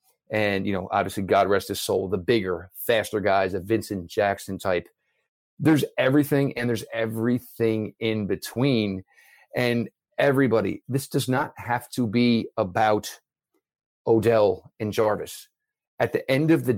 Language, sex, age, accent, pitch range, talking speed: English, male, 40-59, American, 115-145 Hz, 145 wpm